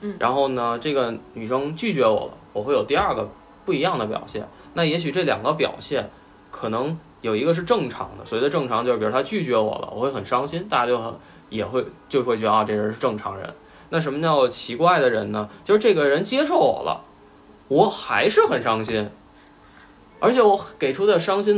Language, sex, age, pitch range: Chinese, male, 20-39, 145-235 Hz